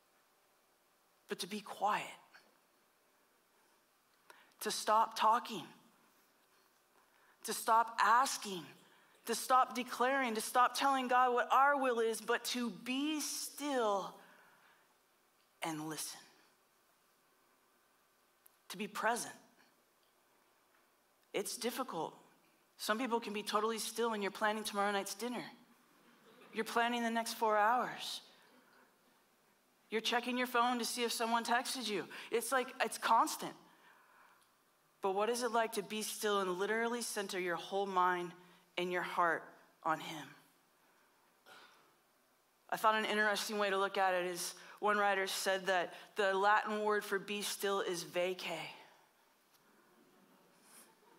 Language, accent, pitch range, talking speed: English, American, 195-240 Hz, 125 wpm